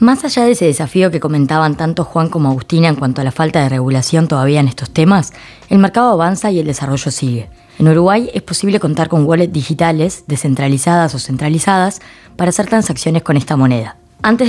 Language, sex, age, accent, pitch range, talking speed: Spanish, female, 20-39, Argentinian, 150-200 Hz, 195 wpm